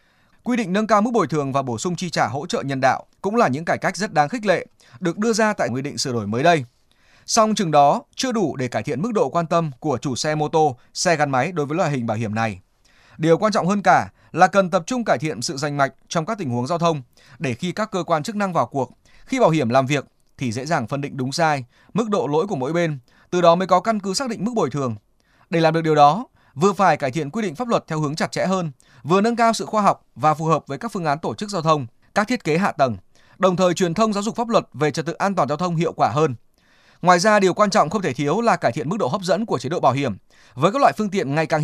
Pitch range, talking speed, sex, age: 140-195 Hz, 295 wpm, male, 20-39